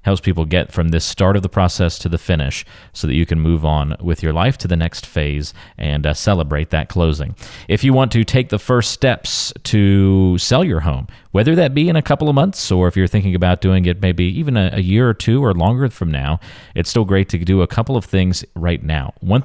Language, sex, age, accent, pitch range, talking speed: English, male, 40-59, American, 85-115 Hz, 245 wpm